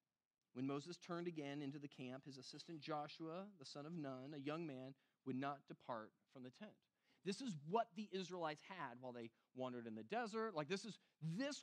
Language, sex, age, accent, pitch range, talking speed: English, male, 30-49, American, 150-225 Hz, 200 wpm